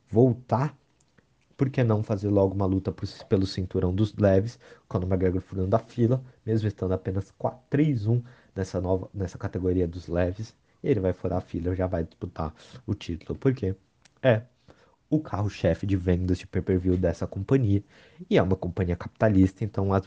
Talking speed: 160 wpm